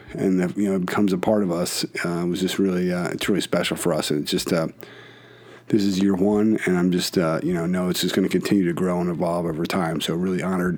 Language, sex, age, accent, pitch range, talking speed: English, male, 40-59, American, 100-125 Hz, 275 wpm